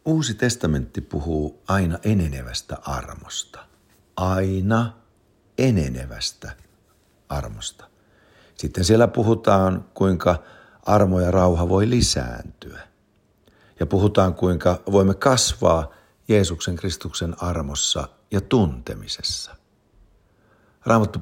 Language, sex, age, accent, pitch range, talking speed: English, male, 60-79, Finnish, 80-105 Hz, 80 wpm